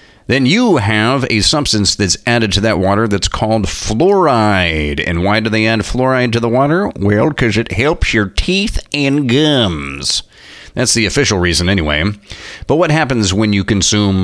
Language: English